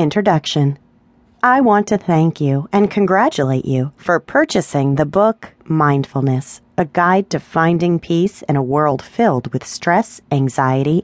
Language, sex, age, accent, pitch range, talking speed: English, female, 30-49, American, 135-205 Hz, 140 wpm